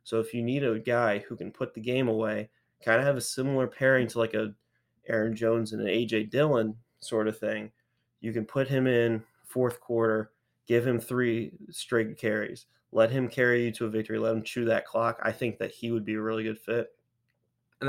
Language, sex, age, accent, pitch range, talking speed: English, male, 20-39, American, 110-120 Hz, 220 wpm